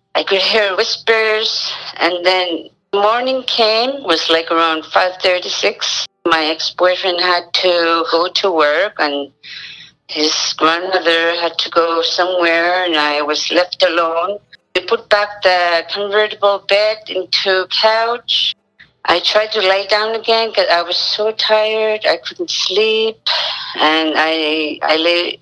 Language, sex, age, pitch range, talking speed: English, female, 40-59, 165-210 Hz, 135 wpm